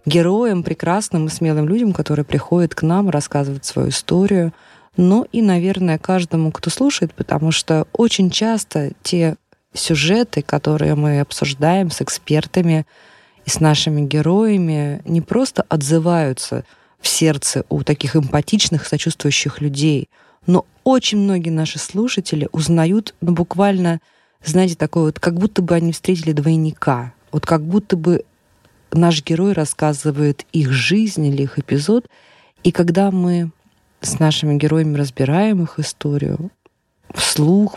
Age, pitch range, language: 20-39, 150-185 Hz, Russian